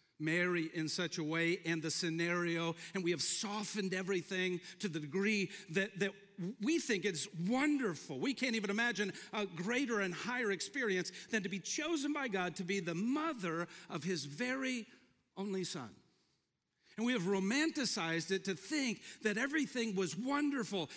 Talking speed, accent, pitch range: 165 wpm, American, 170-225 Hz